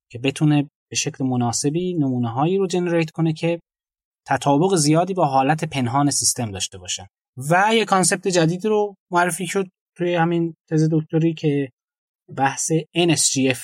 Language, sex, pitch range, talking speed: Persian, male, 130-170 Hz, 145 wpm